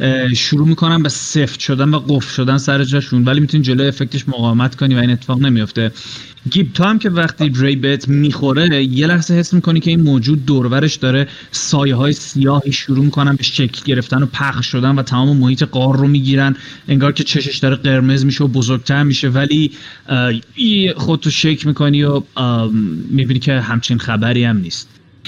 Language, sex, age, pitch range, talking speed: Persian, male, 30-49, 135-160 Hz, 175 wpm